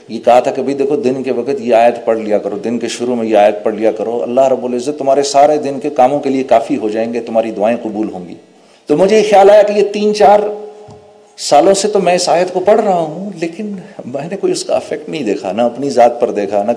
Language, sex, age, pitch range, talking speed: Urdu, male, 40-59, 135-215 Hz, 270 wpm